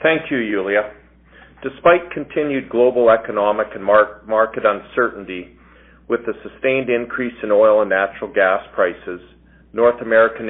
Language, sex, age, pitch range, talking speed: English, male, 40-59, 100-120 Hz, 125 wpm